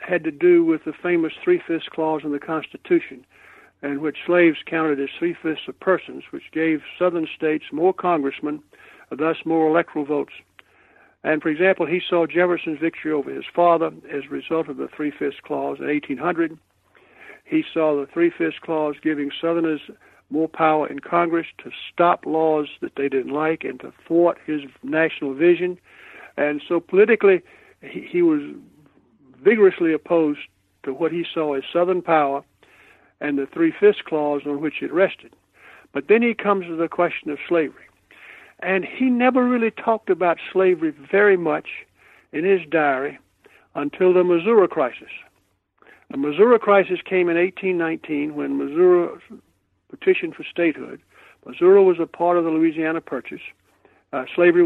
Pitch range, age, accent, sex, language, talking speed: 150-185 Hz, 60-79, American, male, English, 155 wpm